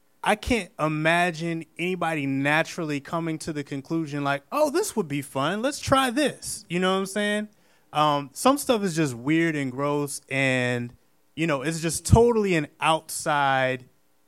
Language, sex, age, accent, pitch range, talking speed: English, male, 20-39, American, 130-165 Hz, 165 wpm